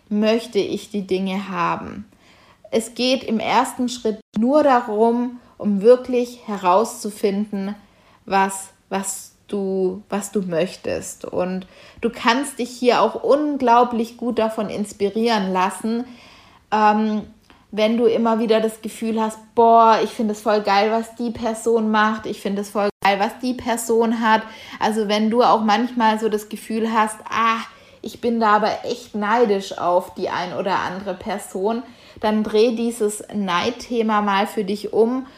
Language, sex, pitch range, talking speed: German, female, 200-230 Hz, 150 wpm